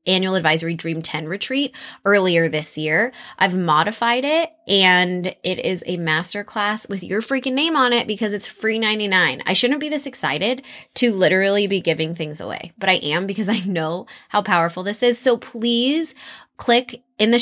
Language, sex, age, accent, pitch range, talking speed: English, female, 20-39, American, 170-220 Hz, 185 wpm